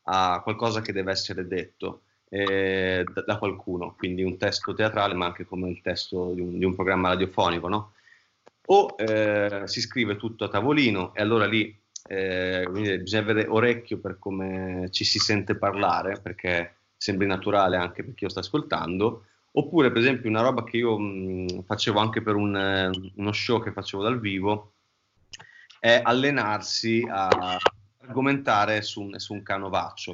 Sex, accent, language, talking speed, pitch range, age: male, native, Italian, 155 wpm, 95-115 Hz, 30-49